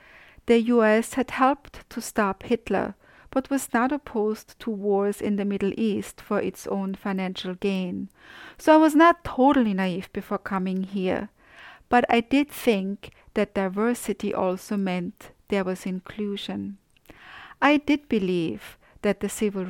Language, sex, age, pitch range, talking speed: English, female, 50-69, 195-235 Hz, 145 wpm